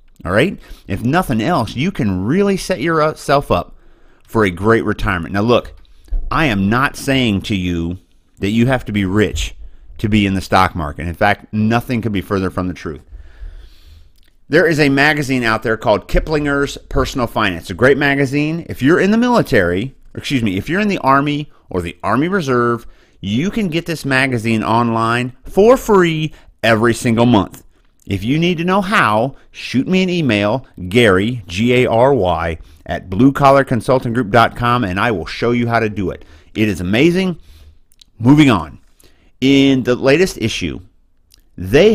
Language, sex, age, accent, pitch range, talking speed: English, male, 30-49, American, 90-140 Hz, 165 wpm